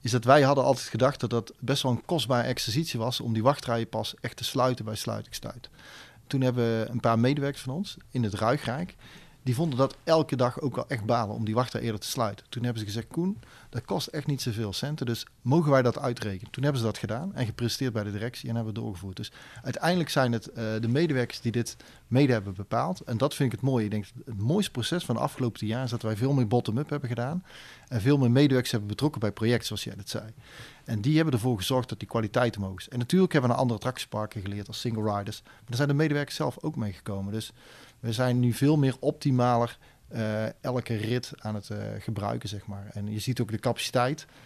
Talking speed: 240 wpm